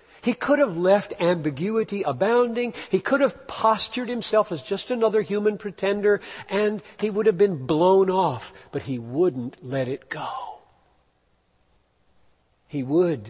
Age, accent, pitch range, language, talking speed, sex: 60-79, American, 145-230 Hz, English, 140 wpm, male